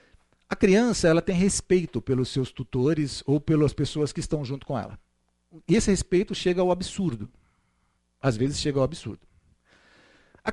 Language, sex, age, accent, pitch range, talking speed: Portuguese, male, 50-69, Brazilian, 130-210 Hz, 160 wpm